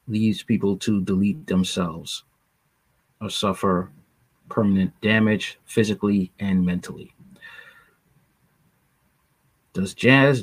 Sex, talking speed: male, 80 wpm